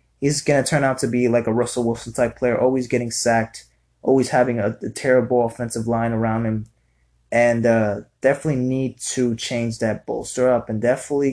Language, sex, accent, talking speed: English, male, American, 185 wpm